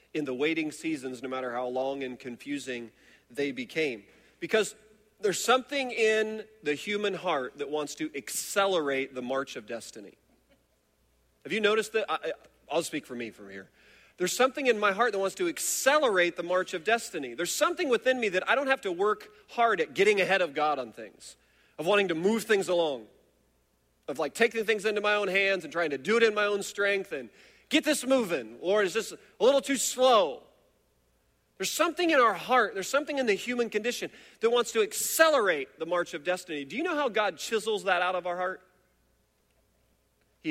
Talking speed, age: 195 wpm, 40-59